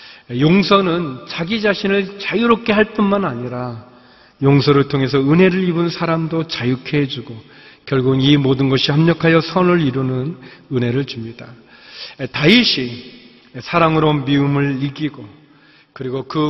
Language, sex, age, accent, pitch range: Korean, male, 40-59, native, 130-165 Hz